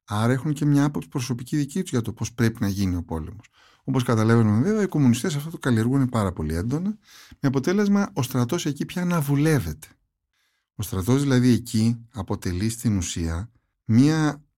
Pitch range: 105-145 Hz